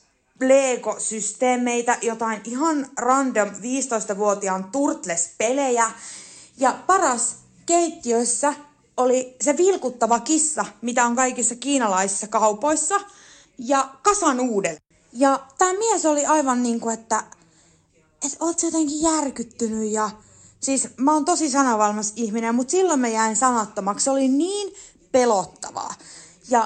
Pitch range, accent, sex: 220-280 Hz, native, female